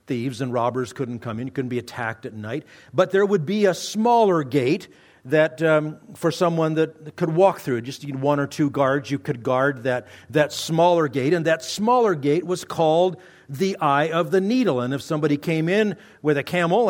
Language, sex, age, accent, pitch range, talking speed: English, male, 50-69, American, 135-180 Hz, 205 wpm